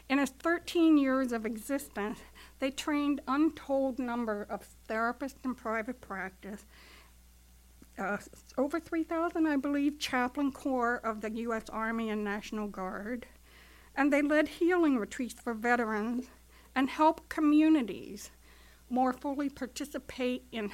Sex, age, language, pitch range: female, 60-79, English, 210-280 Hz